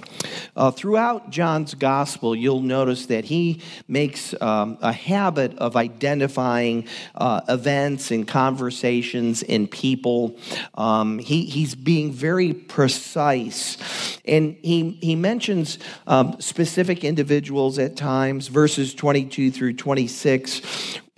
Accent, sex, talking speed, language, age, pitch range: American, male, 110 wpm, English, 50-69, 120-150 Hz